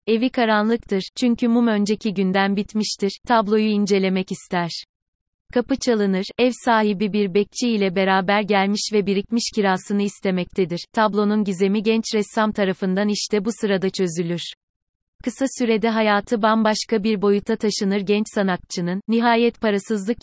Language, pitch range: Turkish, 195-225 Hz